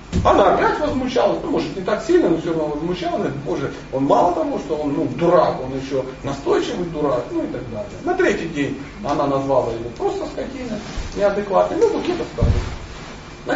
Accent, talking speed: native, 195 wpm